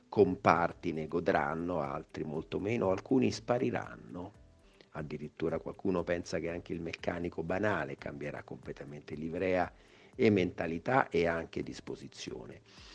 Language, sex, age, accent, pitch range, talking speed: Italian, male, 50-69, native, 80-95 Hz, 110 wpm